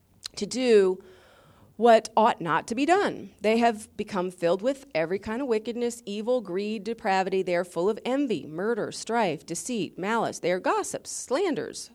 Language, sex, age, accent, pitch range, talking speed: English, female, 40-59, American, 200-265 Hz, 165 wpm